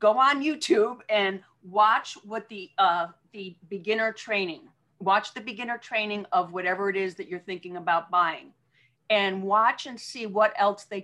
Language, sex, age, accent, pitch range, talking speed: English, female, 40-59, American, 180-220 Hz, 170 wpm